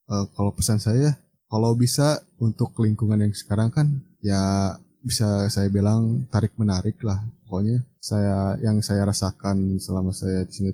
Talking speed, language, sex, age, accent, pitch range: 150 wpm, Indonesian, male, 20-39, native, 105-125 Hz